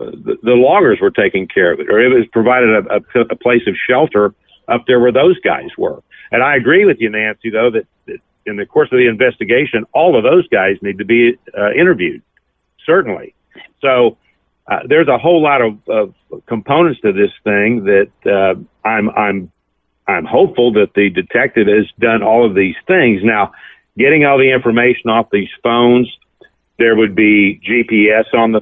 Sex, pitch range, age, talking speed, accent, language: male, 105-125 Hz, 50-69, 185 wpm, American, English